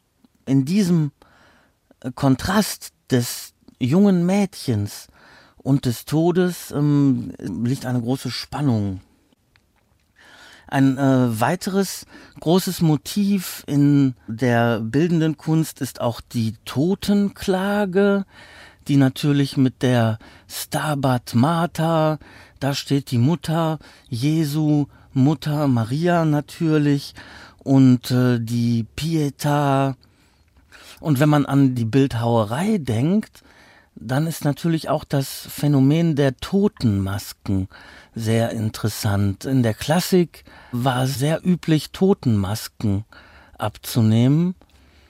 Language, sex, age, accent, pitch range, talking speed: German, male, 40-59, German, 120-160 Hz, 95 wpm